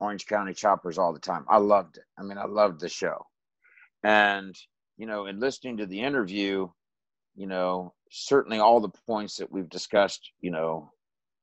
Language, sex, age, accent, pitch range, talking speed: English, male, 50-69, American, 95-110 Hz, 180 wpm